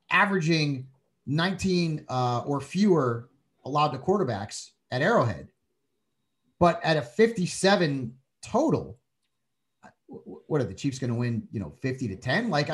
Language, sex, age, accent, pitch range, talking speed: English, male, 30-49, American, 130-175 Hz, 130 wpm